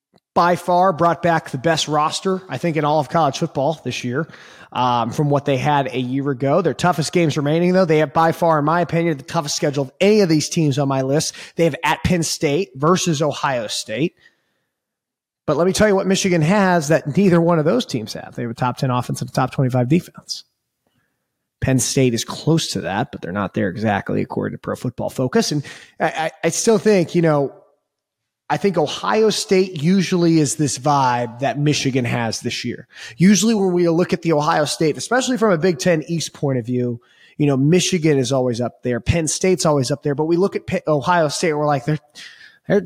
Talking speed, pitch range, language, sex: 220 wpm, 140-180 Hz, English, male